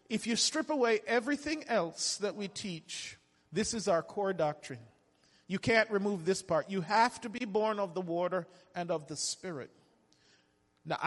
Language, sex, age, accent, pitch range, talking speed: English, male, 40-59, American, 170-230 Hz, 175 wpm